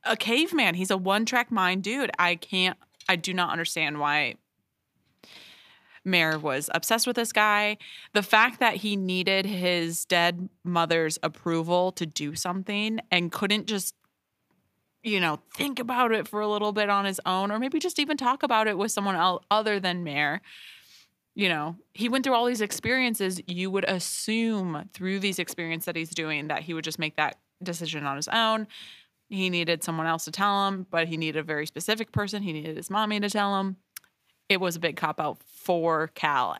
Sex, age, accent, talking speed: female, 20-39, American, 190 wpm